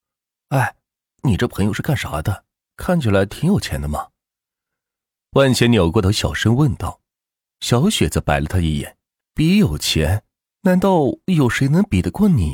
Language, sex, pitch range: Chinese, male, 90-145 Hz